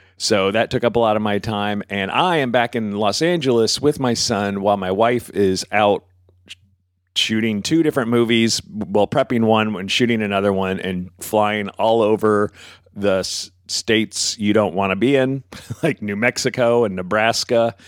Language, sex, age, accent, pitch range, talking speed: English, male, 40-59, American, 95-120 Hz, 180 wpm